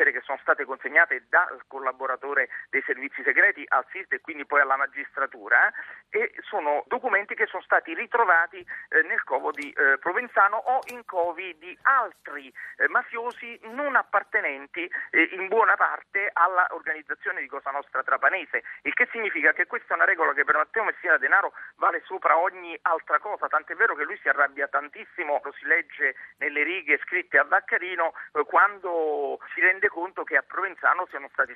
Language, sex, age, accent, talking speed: Italian, male, 40-59, native, 175 wpm